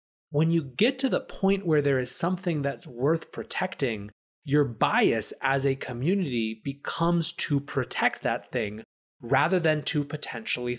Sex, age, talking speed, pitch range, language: male, 30-49, 150 wpm, 125-165 Hz, English